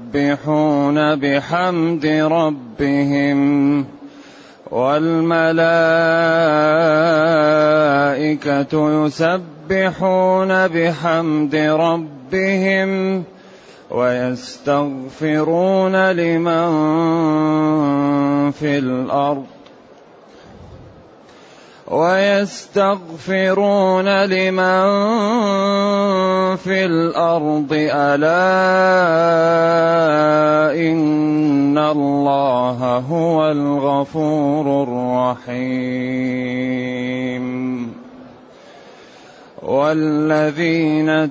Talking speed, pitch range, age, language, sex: 30 wpm, 140-170 Hz, 30-49, Arabic, male